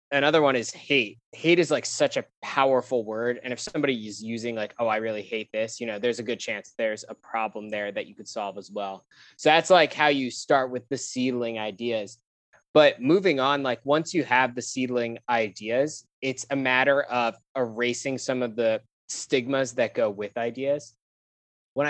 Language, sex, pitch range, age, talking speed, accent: English, male, 115-140 Hz, 20-39, 195 wpm, American